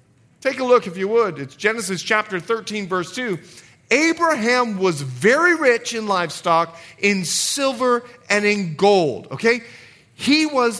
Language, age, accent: English, 40-59, American